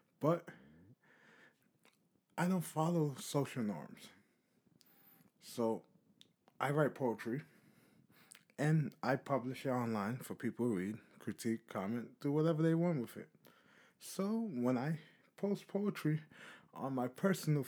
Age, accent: 20-39, American